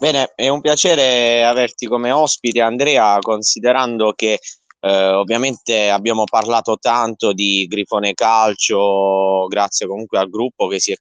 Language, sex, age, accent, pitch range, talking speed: Italian, male, 20-39, native, 100-120 Hz, 135 wpm